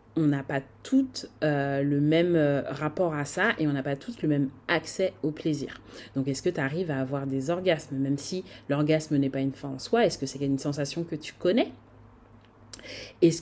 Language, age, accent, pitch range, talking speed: French, 30-49, French, 140-185 Hz, 210 wpm